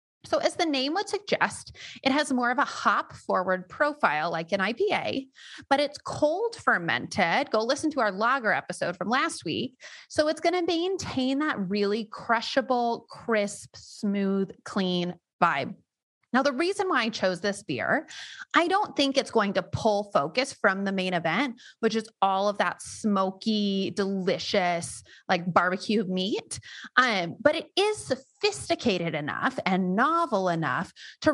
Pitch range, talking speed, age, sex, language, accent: 185-275 Hz, 155 wpm, 30-49, female, English, American